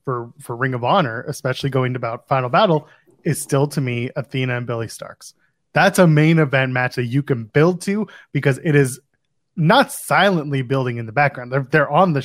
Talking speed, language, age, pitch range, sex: 205 wpm, English, 20-39, 130-165 Hz, male